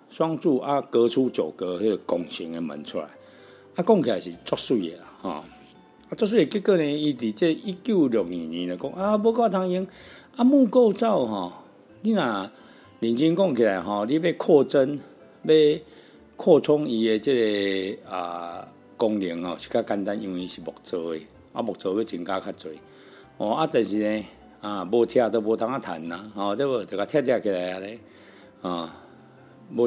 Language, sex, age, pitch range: Chinese, male, 60-79, 100-150 Hz